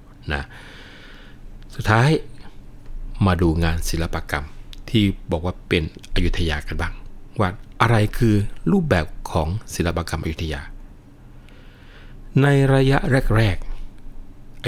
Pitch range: 85-110 Hz